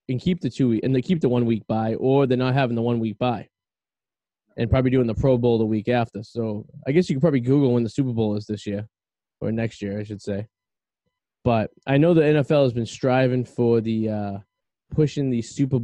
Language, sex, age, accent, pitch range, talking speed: English, male, 20-39, American, 110-135 Hz, 240 wpm